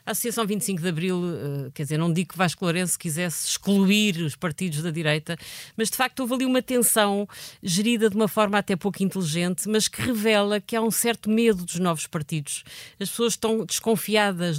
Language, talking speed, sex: Portuguese, 195 wpm, female